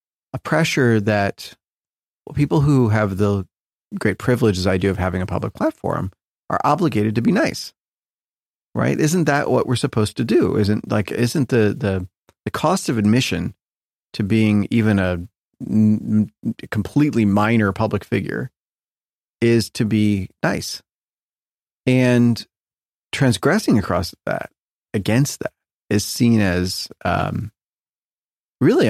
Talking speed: 130 wpm